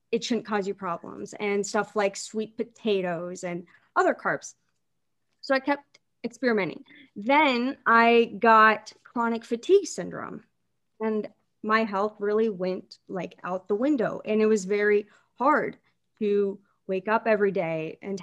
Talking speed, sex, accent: 140 wpm, female, American